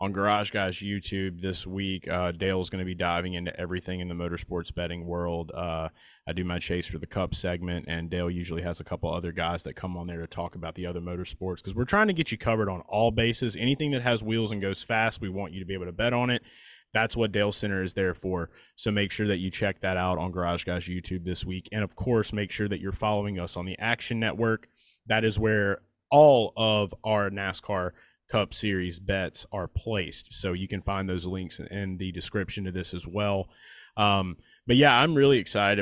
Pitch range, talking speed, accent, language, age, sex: 90-100 Hz, 230 wpm, American, English, 20-39, male